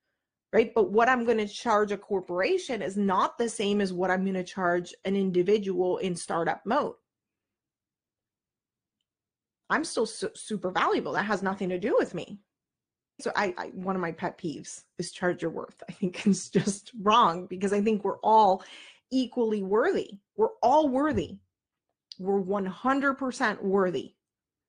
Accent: American